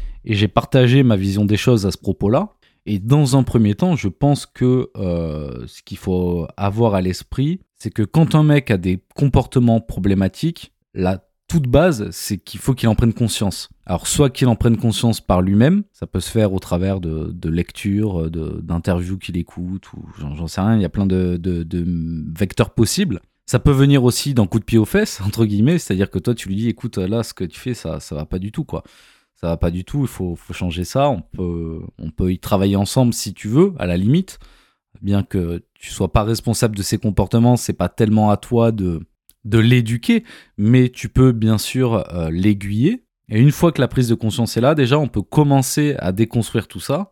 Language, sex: French, male